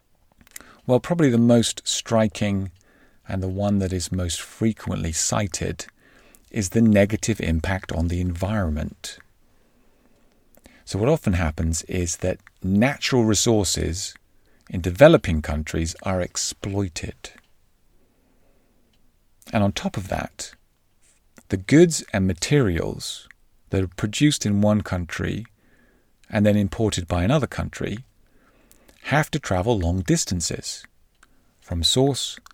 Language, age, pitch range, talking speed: English, 40-59, 85-110 Hz, 115 wpm